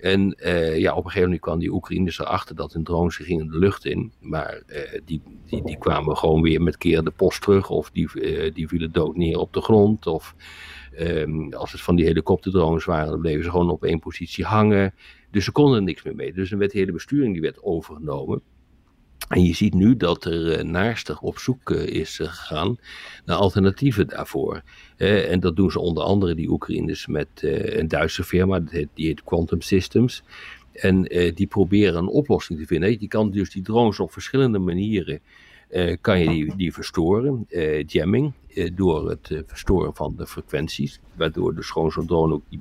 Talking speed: 195 wpm